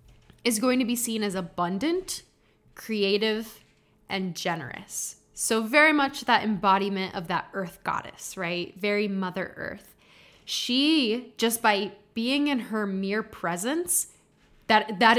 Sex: female